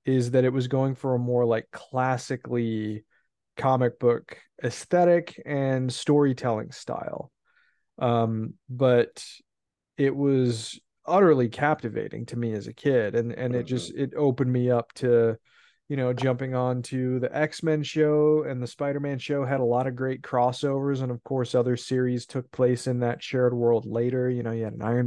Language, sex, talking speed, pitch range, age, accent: English, male, 170 wpm, 120-135 Hz, 20-39, American